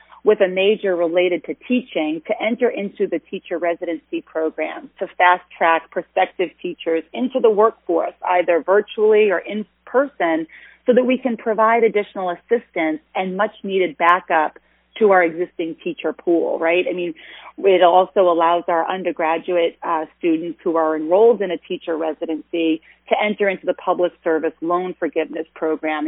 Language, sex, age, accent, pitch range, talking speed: English, female, 30-49, American, 165-210 Hz, 155 wpm